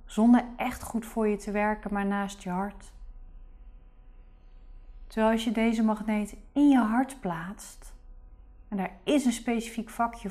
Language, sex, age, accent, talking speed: Dutch, female, 20-39, Dutch, 150 wpm